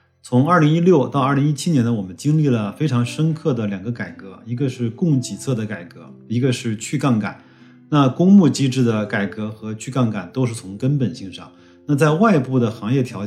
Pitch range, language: 105-140 Hz, Chinese